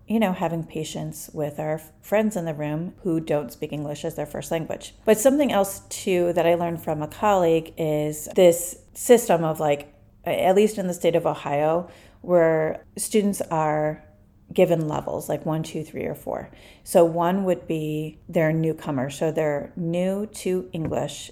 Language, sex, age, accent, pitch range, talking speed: English, female, 30-49, American, 150-175 Hz, 175 wpm